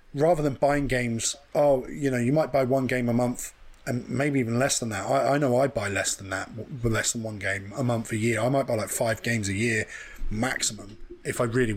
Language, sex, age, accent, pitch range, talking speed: English, male, 20-39, British, 120-150 Hz, 245 wpm